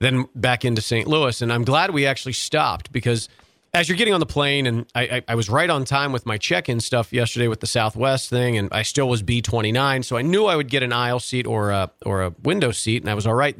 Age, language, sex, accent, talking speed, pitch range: 40-59, English, male, American, 265 wpm, 115-140 Hz